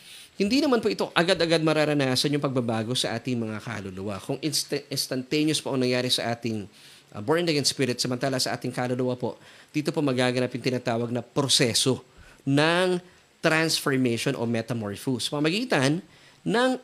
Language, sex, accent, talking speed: Filipino, male, native, 145 wpm